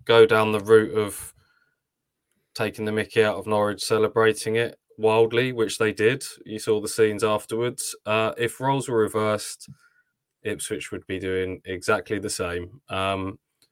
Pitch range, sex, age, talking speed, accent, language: 100-125 Hz, male, 20-39, 155 wpm, British, English